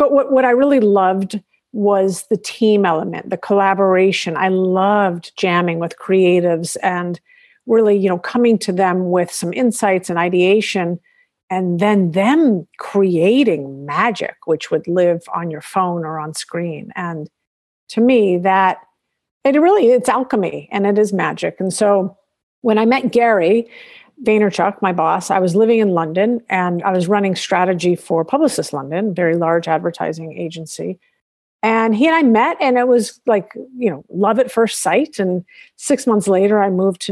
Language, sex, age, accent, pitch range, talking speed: English, female, 50-69, American, 175-220 Hz, 170 wpm